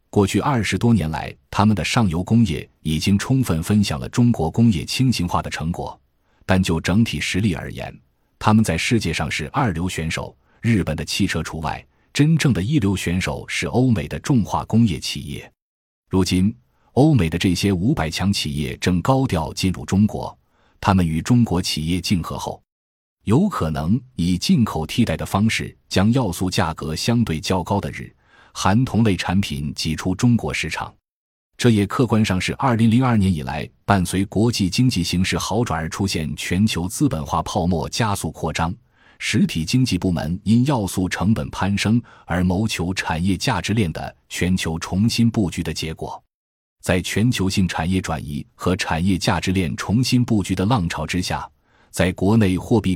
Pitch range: 80-110 Hz